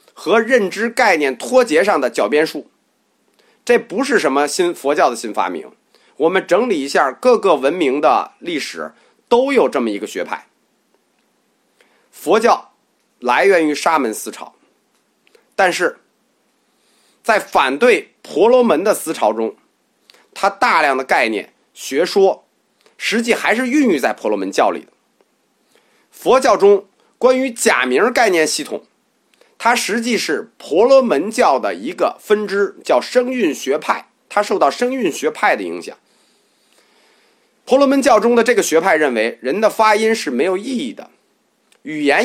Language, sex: Chinese, male